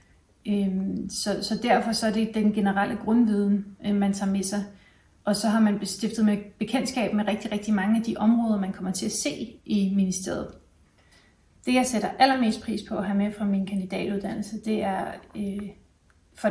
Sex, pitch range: female, 190-210 Hz